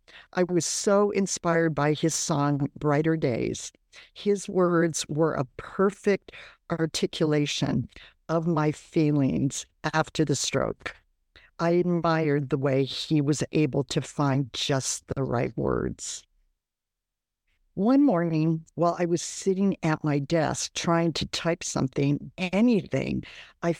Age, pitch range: 50-69, 145-185 Hz